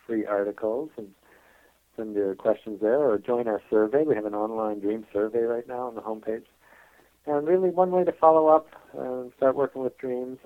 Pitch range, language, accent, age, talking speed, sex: 105-125 Hz, English, American, 50-69, 195 wpm, male